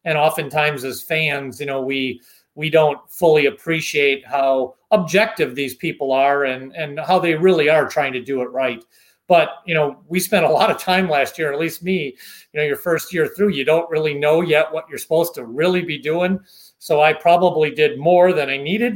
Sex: male